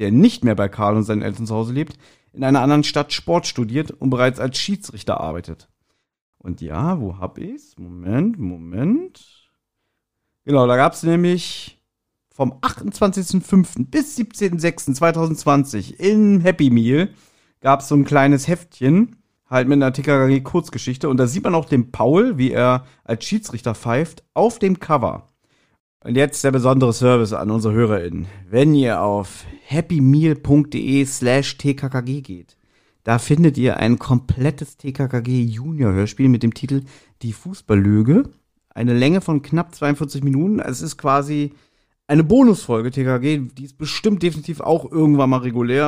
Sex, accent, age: male, German, 40-59